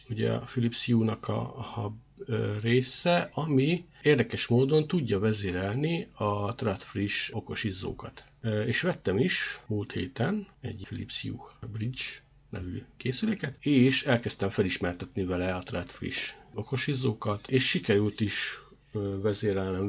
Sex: male